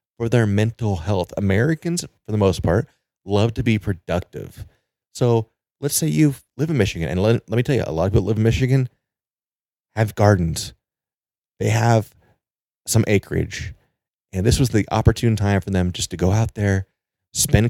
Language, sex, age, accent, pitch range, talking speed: English, male, 30-49, American, 95-115 Hz, 180 wpm